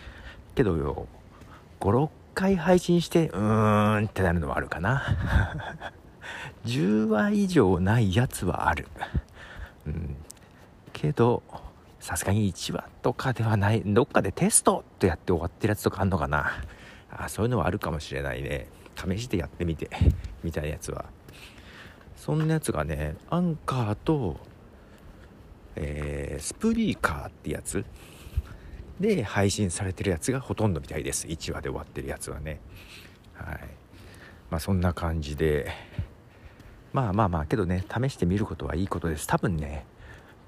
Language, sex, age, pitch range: Japanese, male, 50-69, 80-105 Hz